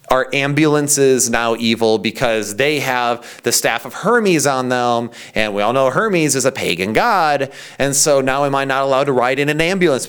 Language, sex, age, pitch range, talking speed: English, male, 30-49, 125-165 Hz, 200 wpm